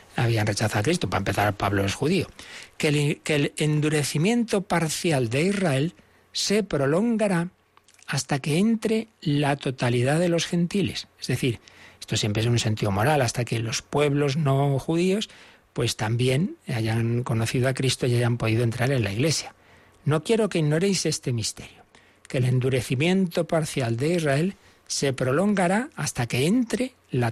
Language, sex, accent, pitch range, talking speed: Spanish, male, Spanish, 120-175 Hz, 155 wpm